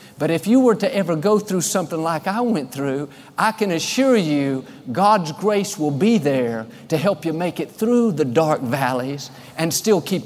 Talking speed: 200 wpm